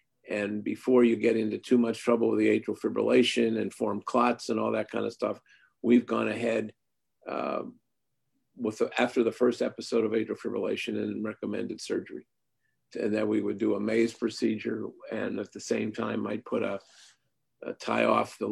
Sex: male